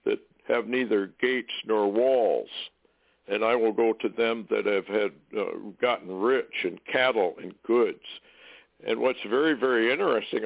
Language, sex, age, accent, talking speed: English, male, 60-79, American, 150 wpm